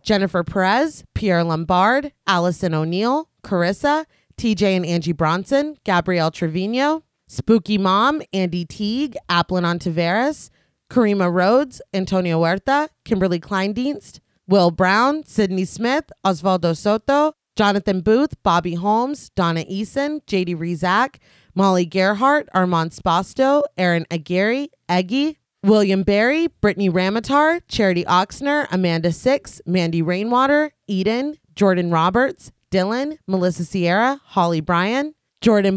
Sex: female